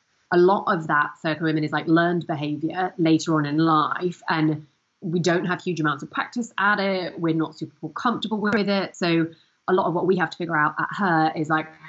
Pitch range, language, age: 155-185 Hz, English, 30-49